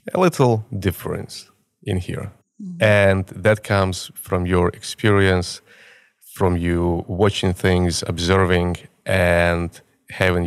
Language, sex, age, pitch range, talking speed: English, male, 20-39, 85-105 Hz, 105 wpm